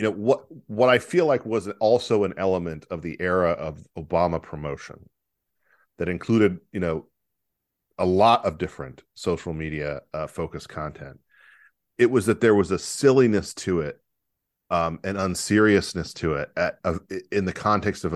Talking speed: 165 wpm